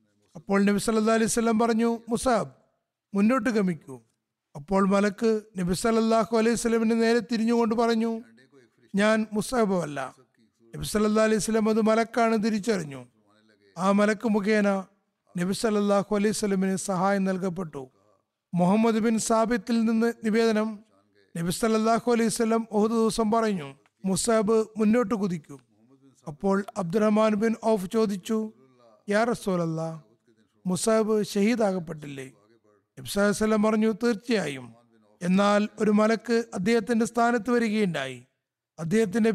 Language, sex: Malayalam, male